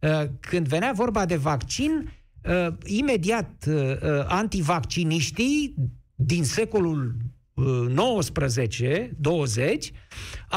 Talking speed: 55 wpm